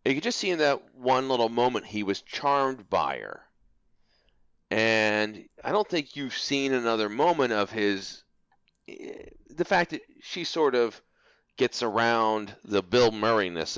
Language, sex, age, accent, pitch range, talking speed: English, male, 30-49, American, 100-130 Hz, 150 wpm